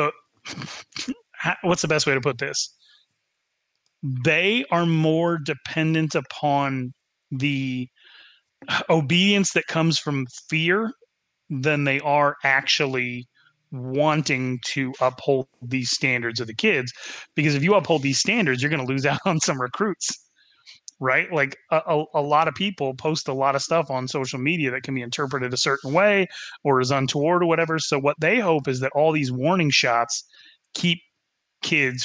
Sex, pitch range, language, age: male, 130-160 Hz, English, 30-49